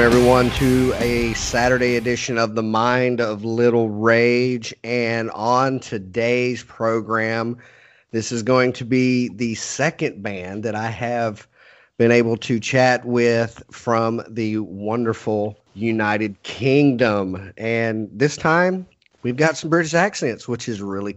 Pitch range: 110-130 Hz